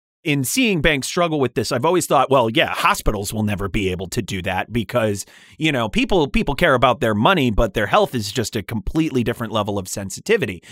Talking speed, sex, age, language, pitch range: 220 wpm, male, 30-49, English, 105-145 Hz